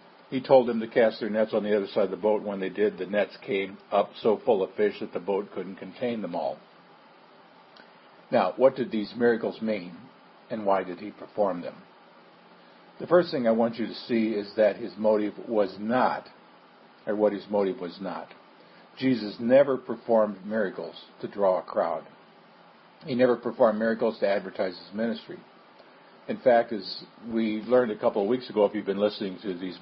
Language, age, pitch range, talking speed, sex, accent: English, 50-69, 105-120 Hz, 195 wpm, male, American